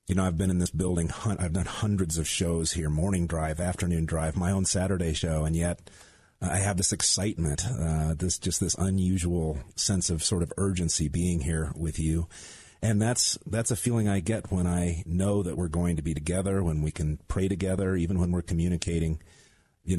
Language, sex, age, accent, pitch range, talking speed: English, male, 40-59, American, 80-95 Hz, 200 wpm